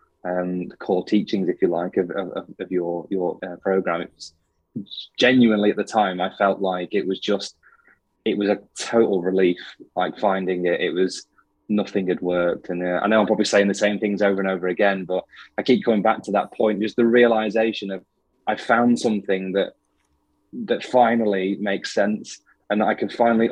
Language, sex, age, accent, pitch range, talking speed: English, male, 20-39, British, 90-105 Hz, 195 wpm